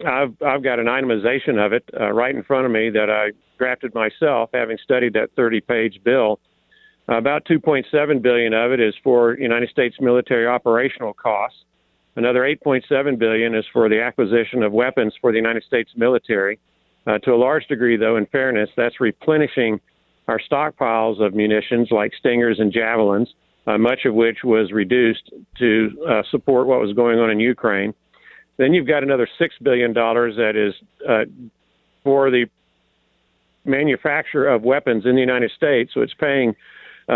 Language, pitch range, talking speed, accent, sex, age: English, 110-130 Hz, 170 wpm, American, male, 50-69